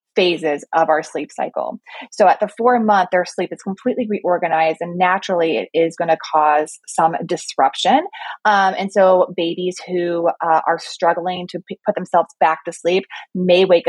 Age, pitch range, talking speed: 30-49, 165-210 Hz, 175 wpm